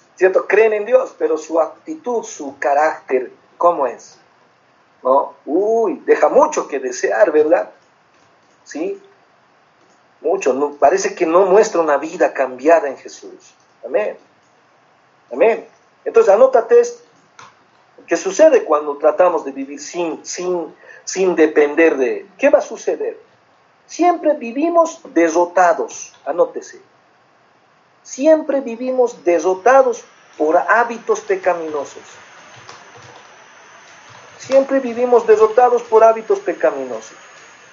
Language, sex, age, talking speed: Spanish, male, 50-69, 105 wpm